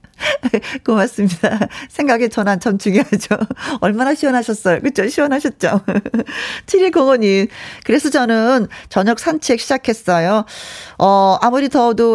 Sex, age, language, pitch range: female, 40-59, Korean, 180-255 Hz